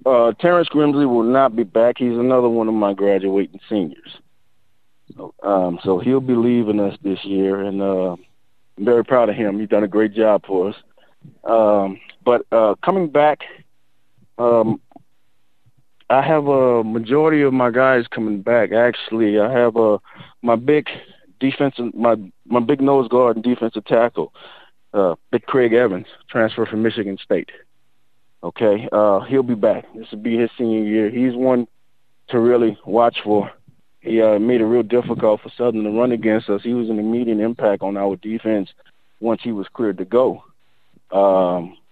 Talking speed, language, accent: 170 wpm, English, American